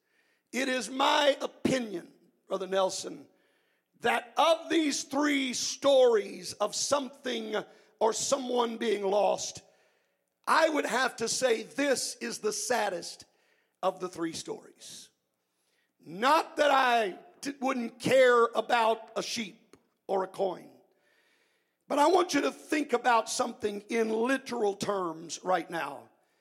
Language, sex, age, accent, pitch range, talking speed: English, male, 50-69, American, 225-295 Hz, 125 wpm